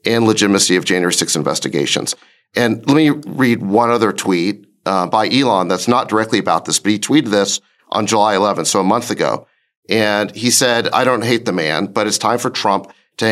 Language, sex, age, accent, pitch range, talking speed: English, male, 40-59, American, 100-130 Hz, 205 wpm